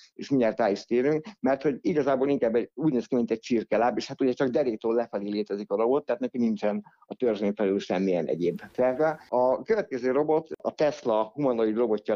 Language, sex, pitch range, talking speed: Hungarian, male, 115-135 Hz, 190 wpm